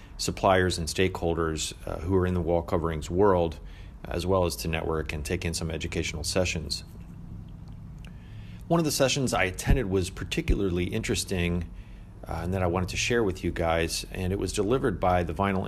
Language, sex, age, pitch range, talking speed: English, male, 30-49, 80-95 Hz, 185 wpm